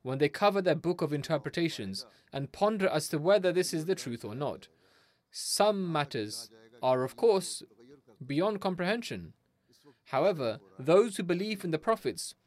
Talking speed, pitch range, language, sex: 155 wpm, 120-180 Hz, English, male